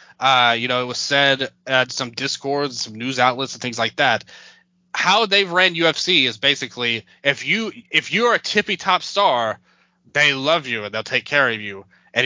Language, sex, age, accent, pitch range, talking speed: English, male, 20-39, American, 120-160 Hz, 200 wpm